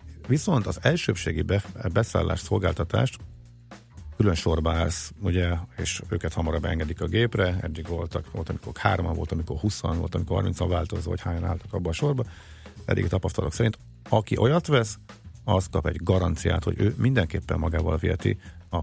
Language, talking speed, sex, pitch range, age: Hungarian, 160 wpm, male, 90-115 Hz, 50-69